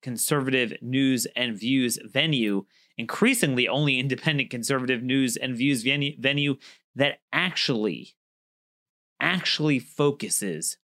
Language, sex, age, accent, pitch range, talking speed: English, male, 30-49, American, 115-140 Hz, 100 wpm